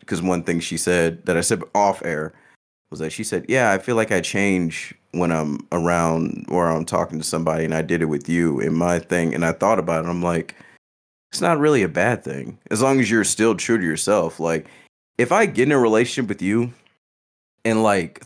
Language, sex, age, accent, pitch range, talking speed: English, male, 30-49, American, 80-110 Hz, 225 wpm